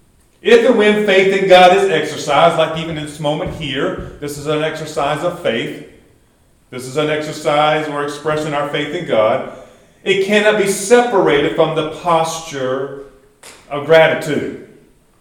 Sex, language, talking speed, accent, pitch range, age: male, English, 155 wpm, American, 120-160 Hz, 40-59